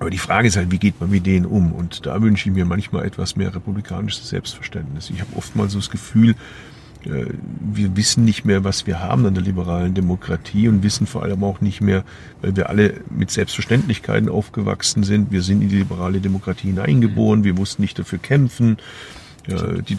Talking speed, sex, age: 195 wpm, male, 50-69